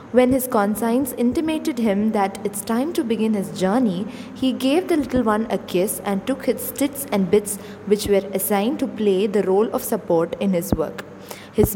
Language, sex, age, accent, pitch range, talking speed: English, female, 20-39, Indian, 200-255 Hz, 195 wpm